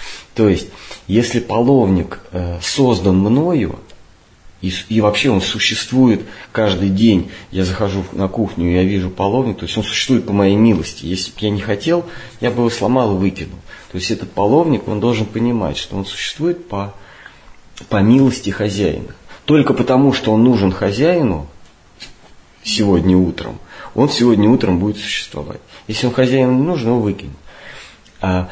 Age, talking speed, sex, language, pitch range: 30-49, 160 wpm, male, Russian, 95-120 Hz